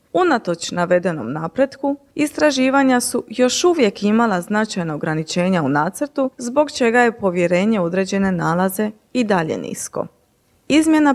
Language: Croatian